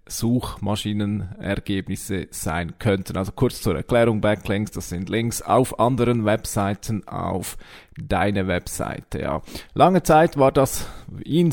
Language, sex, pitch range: German, male, 105-135 Hz